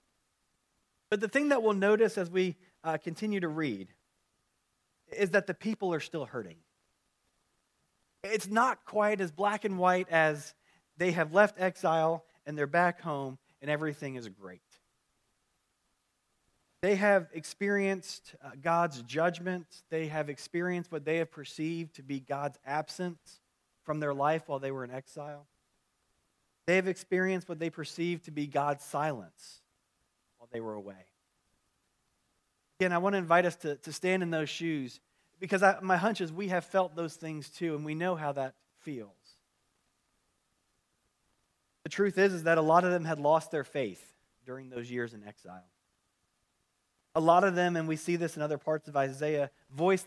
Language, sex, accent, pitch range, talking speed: English, male, American, 140-180 Hz, 165 wpm